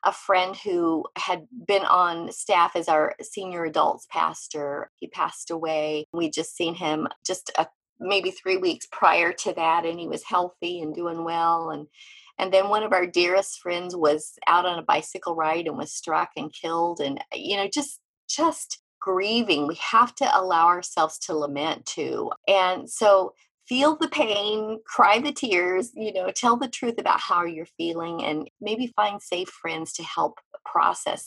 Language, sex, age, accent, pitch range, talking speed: English, female, 30-49, American, 165-235 Hz, 175 wpm